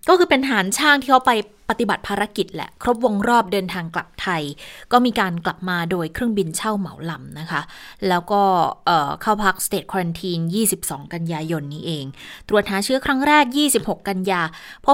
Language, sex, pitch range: Thai, female, 180-230 Hz